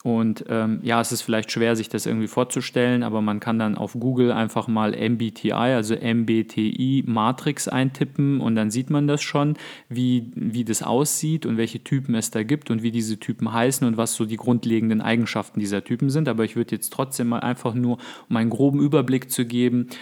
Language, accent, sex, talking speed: German, German, male, 205 wpm